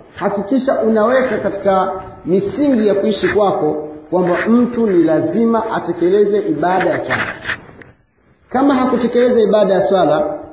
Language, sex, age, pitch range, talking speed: Swahili, male, 40-59, 185-245 Hz, 115 wpm